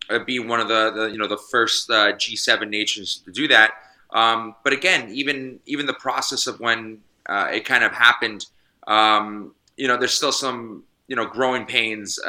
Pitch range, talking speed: 105-125 Hz, 190 wpm